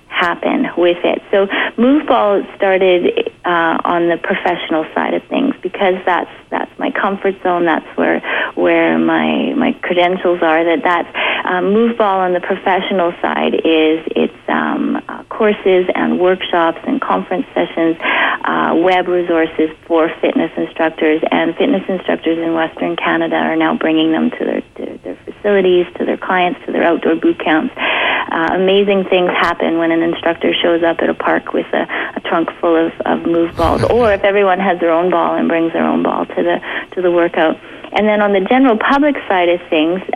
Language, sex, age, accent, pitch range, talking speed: English, female, 30-49, American, 165-200 Hz, 180 wpm